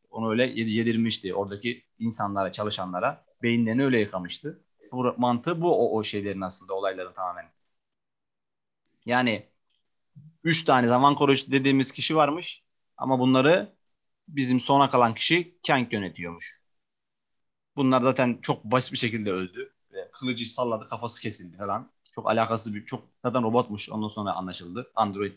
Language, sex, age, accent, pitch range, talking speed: Turkish, male, 30-49, native, 110-135 Hz, 130 wpm